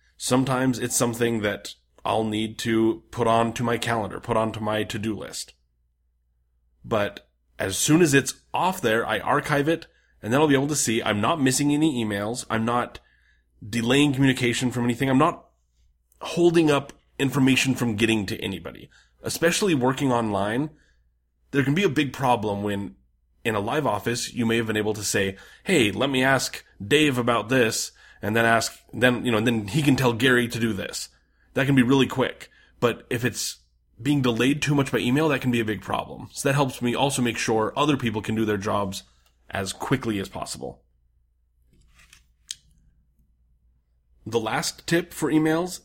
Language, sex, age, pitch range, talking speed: English, male, 30-49, 95-135 Hz, 185 wpm